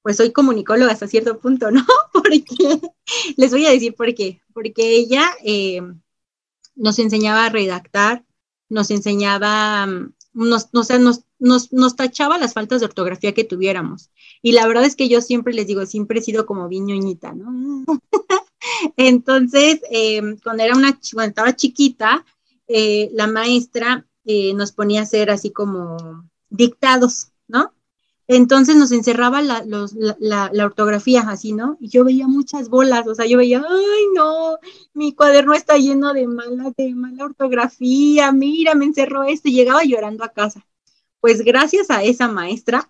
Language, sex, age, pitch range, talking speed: Spanish, female, 30-49, 205-265 Hz, 165 wpm